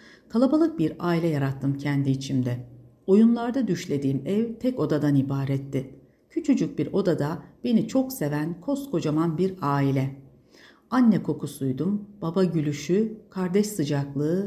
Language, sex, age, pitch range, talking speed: Turkish, female, 60-79, 135-230 Hz, 110 wpm